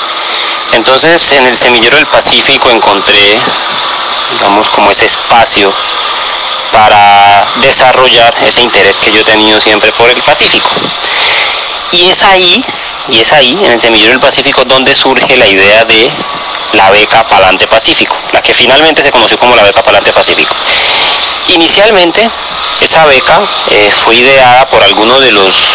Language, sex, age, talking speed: Spanish, male, 30-49, 145 wpm